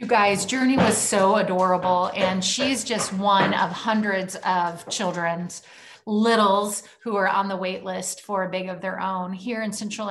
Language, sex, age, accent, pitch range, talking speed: English, female, 30-49, American, 185-205 Hz, 180 wpm